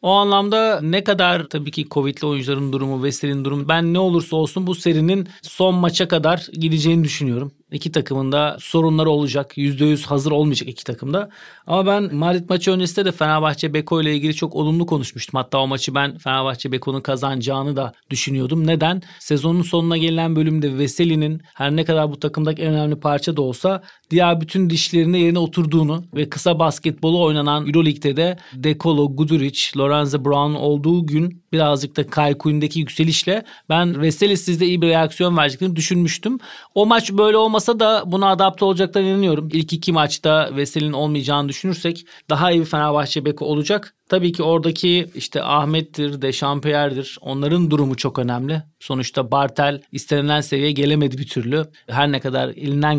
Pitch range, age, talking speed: 145-175 Hz, 40-59, 160 wpm